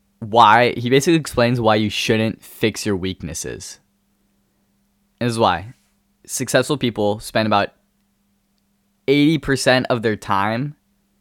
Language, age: English, 10-29